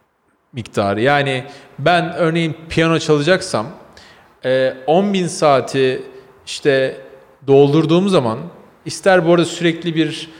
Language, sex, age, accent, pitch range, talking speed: Turkish, male, 40-59, native, 135-170 Hz, 90 wpm